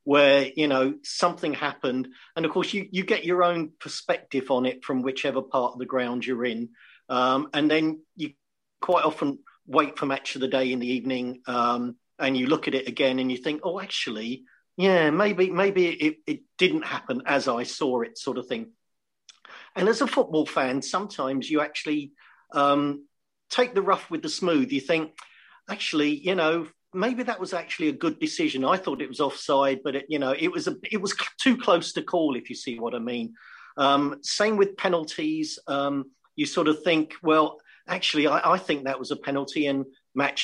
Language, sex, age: English, male, 50-69